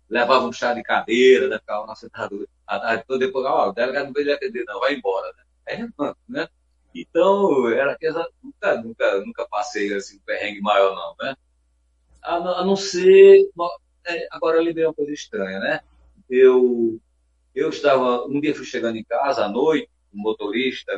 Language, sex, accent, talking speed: Portuguese, male, Brazilian, 175 wpm